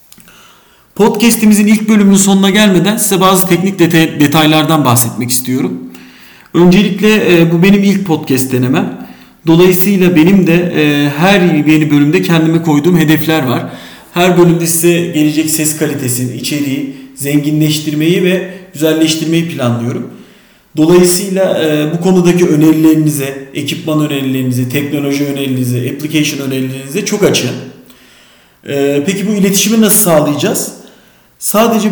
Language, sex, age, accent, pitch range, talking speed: Turkish, male, 40-59, native, 145-185 Hz, 115 wpm